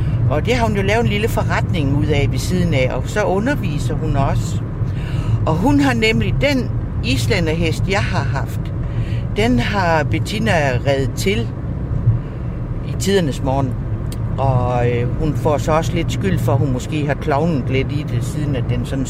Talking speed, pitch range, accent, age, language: 175 wpm, 115-135 Hz, native, 60-79, Danish